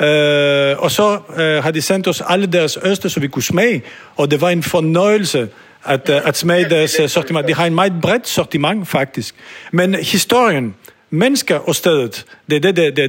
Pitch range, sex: 145-190 Hz, male